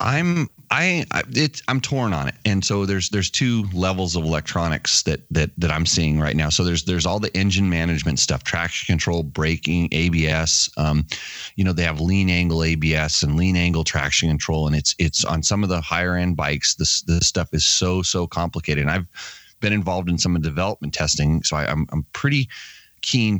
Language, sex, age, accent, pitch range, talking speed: English, male, 30-49, American, 80-100 Hz, 210 wpm